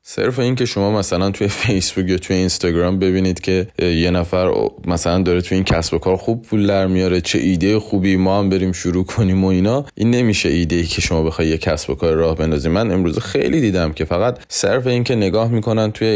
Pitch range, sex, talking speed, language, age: 85-110 Hz, male, 215 wpm, Persian, 20-39